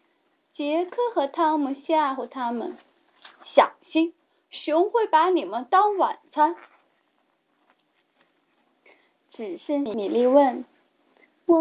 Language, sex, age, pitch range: Chinese, female, 20-39, 245-335 Hz